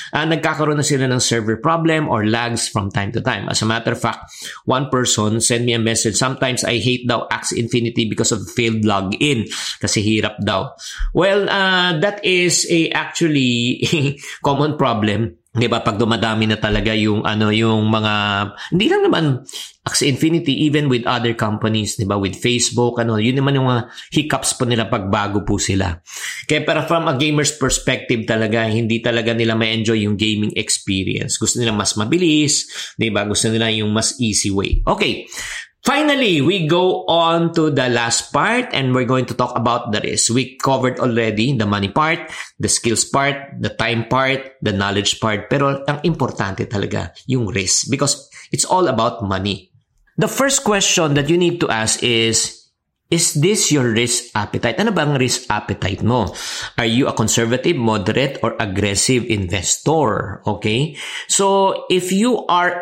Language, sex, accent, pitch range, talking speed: English, male, Filipino, 110-150 Hz, 175 wpm